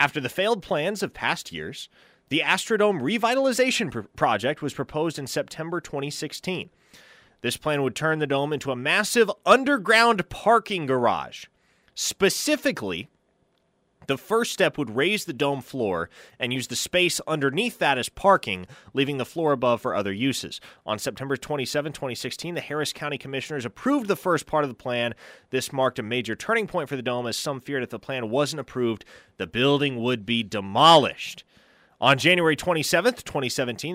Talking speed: 165 wpm